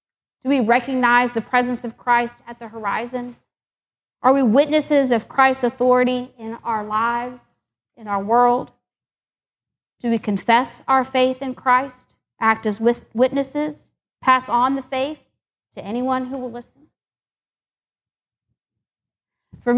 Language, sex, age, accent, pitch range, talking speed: English, female, 40-59, American, 225-270 Hz, 125 wpm